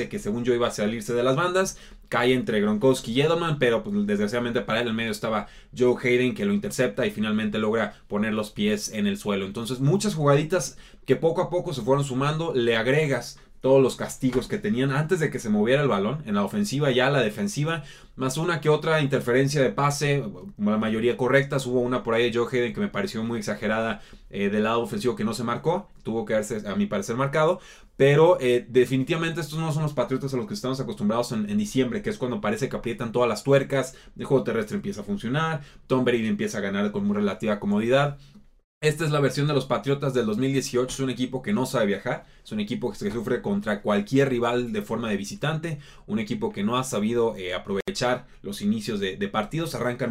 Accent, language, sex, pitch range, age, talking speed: Mexican, Spanish, male, 120-165 Hz, 20-39, 225 wpm